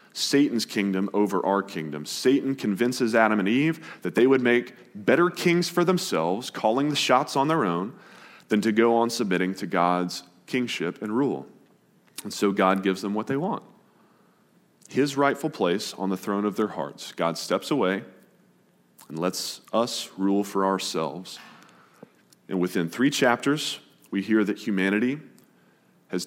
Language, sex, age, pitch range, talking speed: English, male, 30-49, 90-130 Hz, 160 wpm